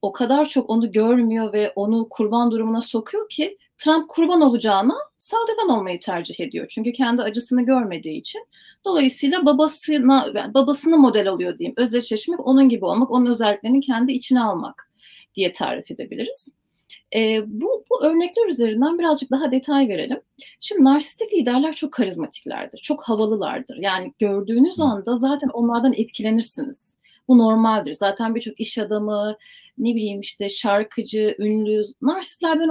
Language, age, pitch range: Turkish, 30-49, 220-295 Hz